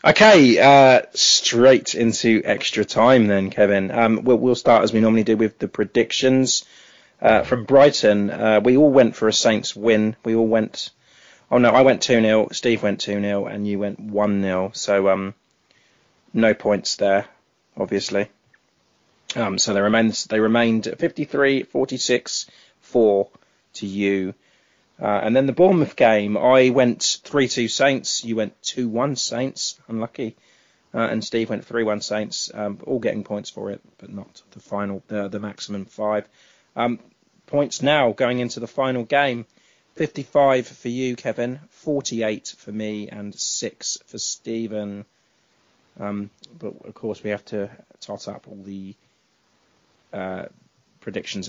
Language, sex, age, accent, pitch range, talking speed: English, male, 20-39, British, 100-125 Hz, 155 wpm